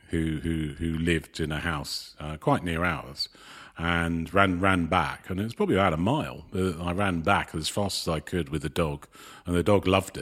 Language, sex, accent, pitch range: English, male, British, 80-100 Hz